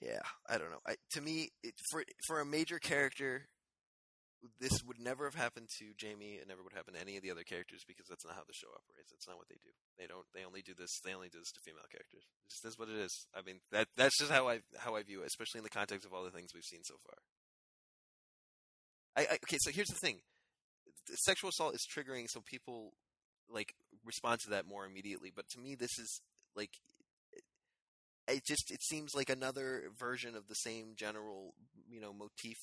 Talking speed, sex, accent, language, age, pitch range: 230 wpm, male, American, English, 20-39, 95-120 Hz